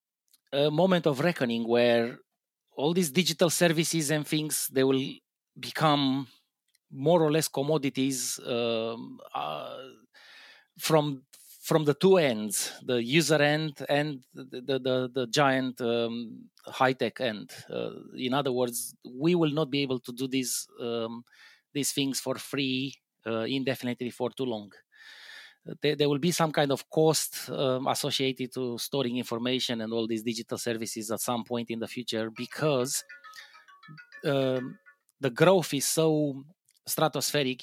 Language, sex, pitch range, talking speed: English, male, 125-170 Hz, 145 wpm